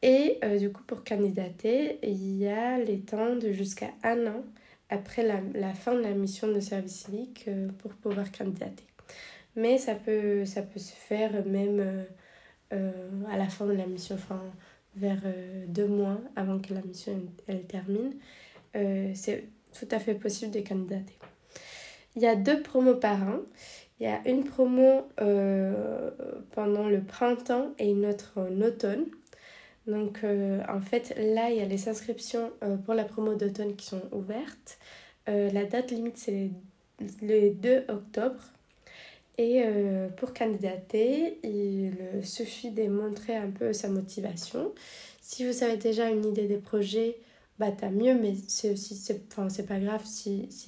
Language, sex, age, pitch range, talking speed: French, female, 20-39, 200-235 Hz, 170 wpm